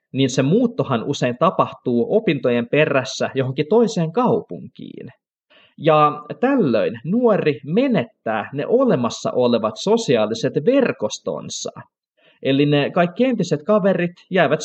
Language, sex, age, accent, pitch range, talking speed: Finnish, male, 20-39, native, 125-200 Hz, 100 wpm